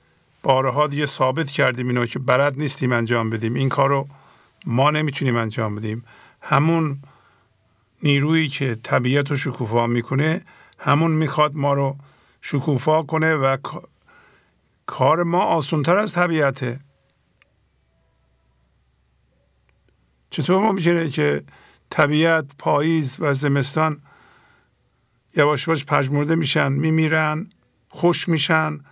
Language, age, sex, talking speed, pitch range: English, 50-69, male, 105 wpm, 135-160 Hz